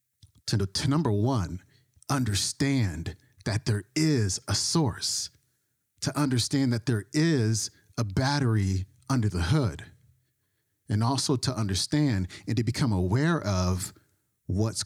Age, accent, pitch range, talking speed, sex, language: 40-59, American, 100-130 Hz, 120 wpm, male, English